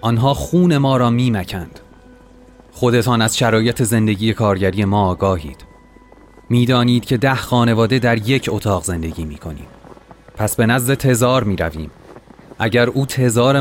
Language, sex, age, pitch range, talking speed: Persian, male, 30-49, 95-120 Hz, 140 wpm